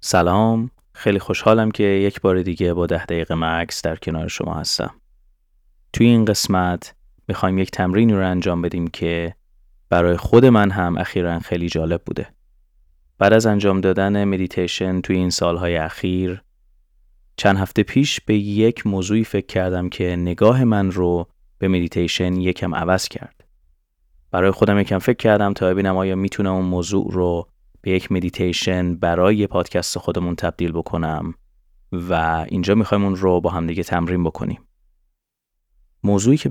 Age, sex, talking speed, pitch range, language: 30-49, male, 150 wpm, 85-100 Hz, Persian